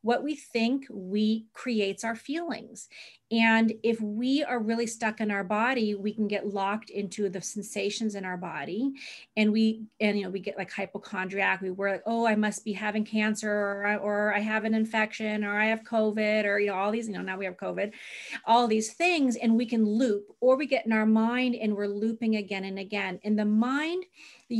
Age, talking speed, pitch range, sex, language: 30-49, 215 wpm, 205-245 Hz, female, English